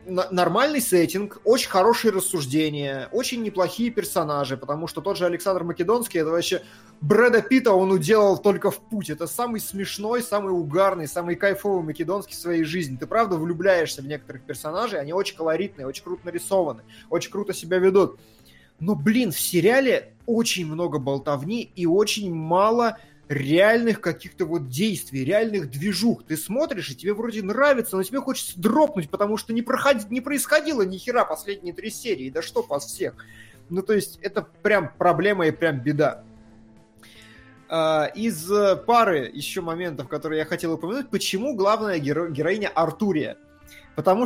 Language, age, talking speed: Russian, 20-39, 150 wpm